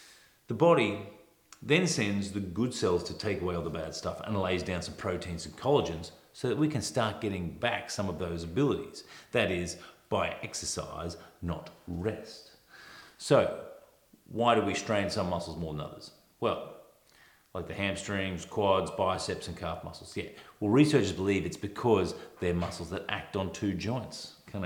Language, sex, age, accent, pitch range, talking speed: English, male, 40-59, Australian, 90-115 Hz, 175 wpm